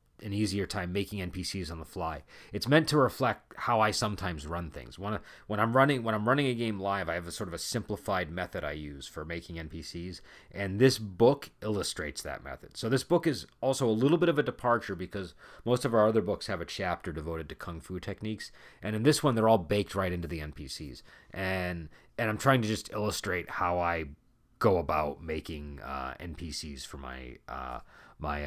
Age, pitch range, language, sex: 30-49, 85-115 Hz, English, male